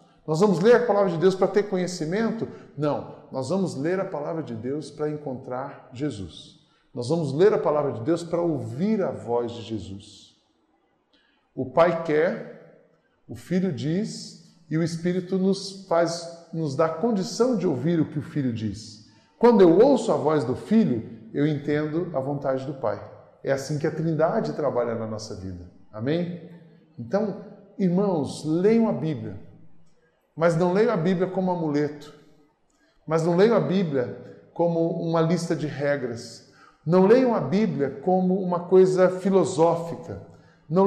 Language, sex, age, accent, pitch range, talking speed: Portuguese, male, 20-39, Brazilian, 145-190 Hz, 160 wpm